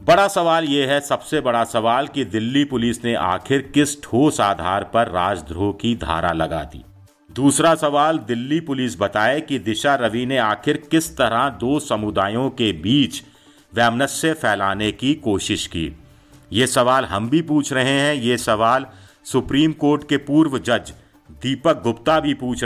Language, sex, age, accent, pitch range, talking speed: Hindi, male, 50-69, native, 105-145 Hz, 160 wpm